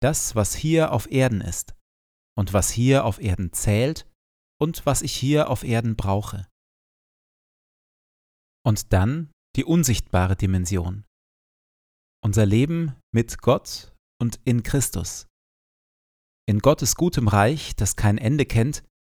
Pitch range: 95-130 Hz